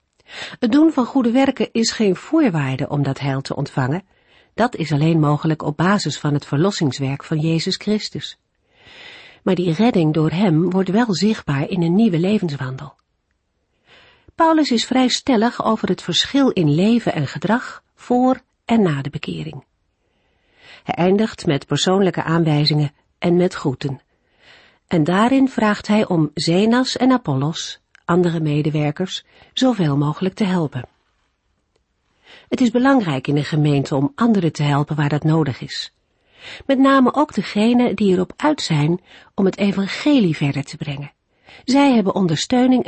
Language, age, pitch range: Dutch, 50-69, 150-220 Hz